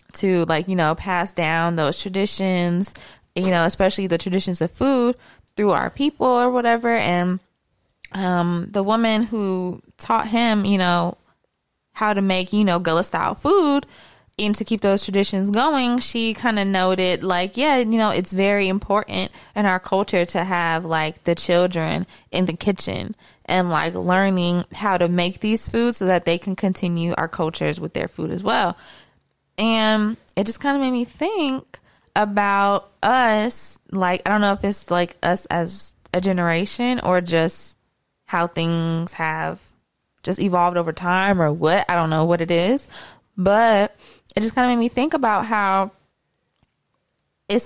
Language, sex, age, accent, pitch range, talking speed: English, female, 20-39, American, 175-215 Hz, 170 wpm